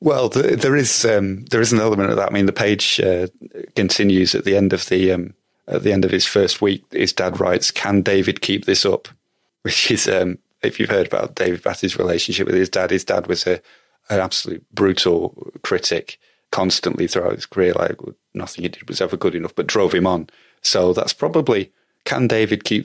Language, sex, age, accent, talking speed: English, male, 30-49, British, 210 wpm